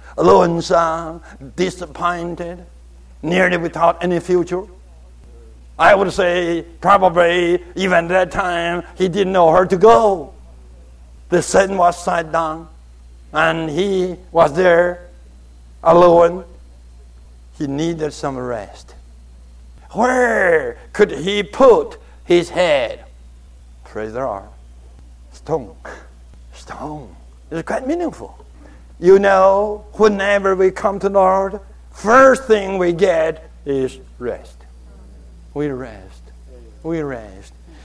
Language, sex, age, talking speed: English, male, 60-79, 105 wpm